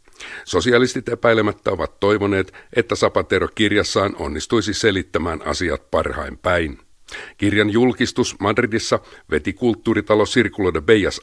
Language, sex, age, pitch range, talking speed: Finnish, male, 60-79, 100-115 Hz, 105 wpm